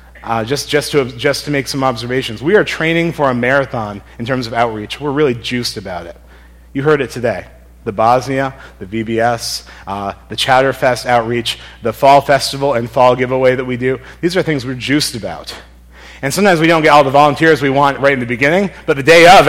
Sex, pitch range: male, 105-145 Hz